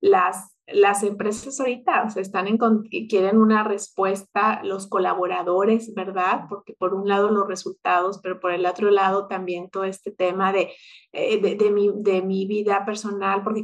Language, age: Spanish, 30-49